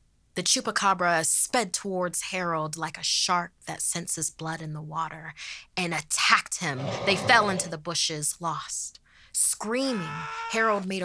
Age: 20-39